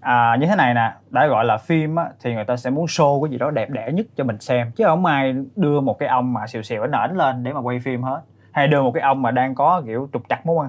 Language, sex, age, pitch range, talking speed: Vietnamese, male, 20-39, 130-185 Hz, 315 wpm